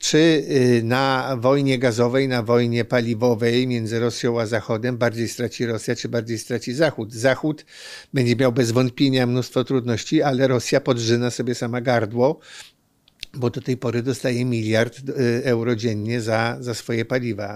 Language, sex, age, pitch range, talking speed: Polish, male, 50-69, 120-135 Hz, 145 wpm